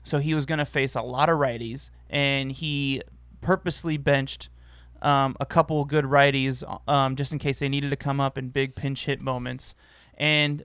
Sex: male